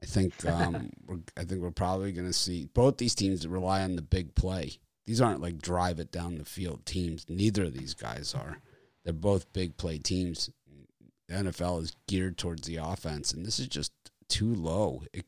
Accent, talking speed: American, 200 wpm